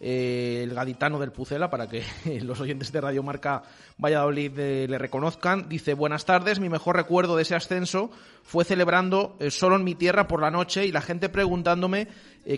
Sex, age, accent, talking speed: male, 30-49, Spanish, 185 wpm